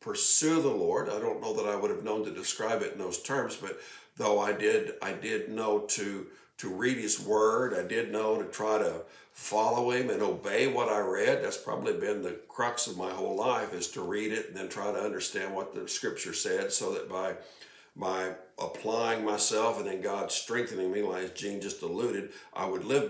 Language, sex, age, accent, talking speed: English, male, 60-79, American, 215 wpm